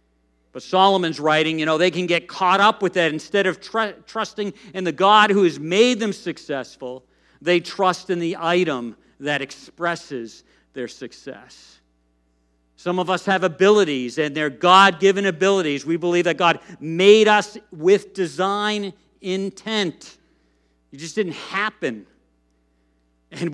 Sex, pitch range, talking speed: male, 145-200 Hz, 140 wpm